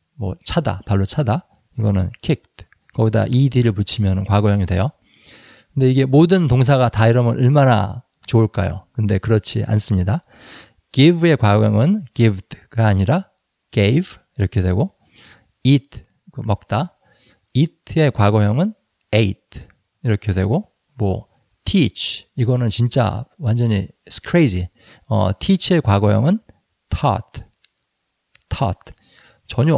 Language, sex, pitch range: Korean, male, 100-140 Hz